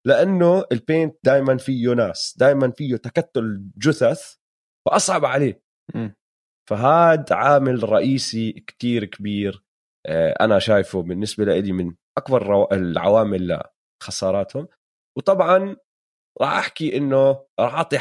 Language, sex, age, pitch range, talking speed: Arabic, male, 30-49, 105-140 Hz, 105 wpm